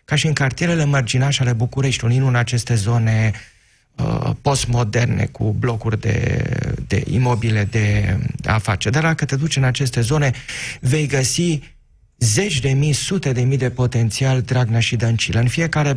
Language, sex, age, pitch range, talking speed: Romanian, male, 30-49, 115-145 Hz, 160 wpm